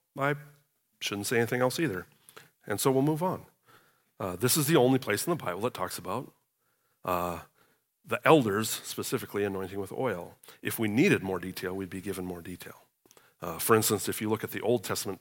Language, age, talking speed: English, 40-59, 195 wpm